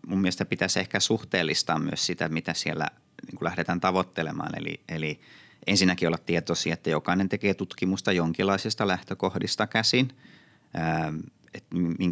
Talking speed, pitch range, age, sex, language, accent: 125 wpm, 85-100 Hz, 30-49, male, Finnish, native